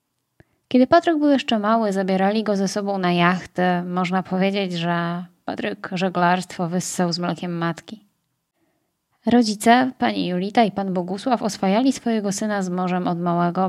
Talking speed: 145 wpm